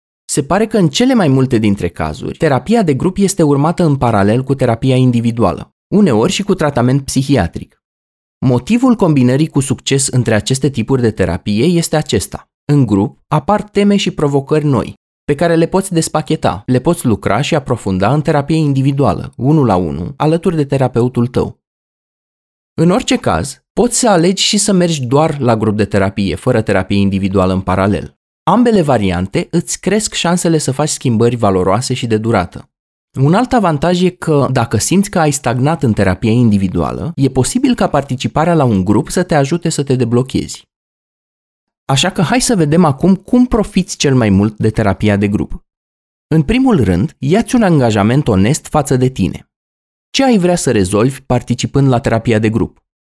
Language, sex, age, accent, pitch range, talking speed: Romanian, male, 20-39, native, 110-170 Hz, 175 wpm